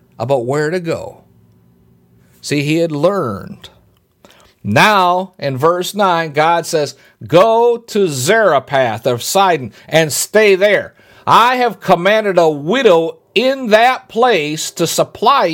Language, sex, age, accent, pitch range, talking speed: English, male, 50-69, American, 125-195 Hz, 125 wpm